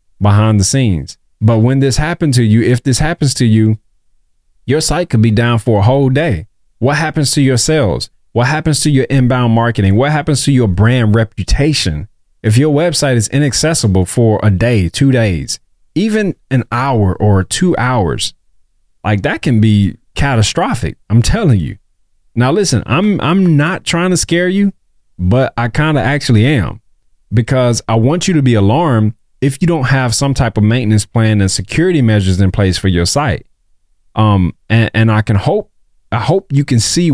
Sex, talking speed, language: male, 185 wpm, English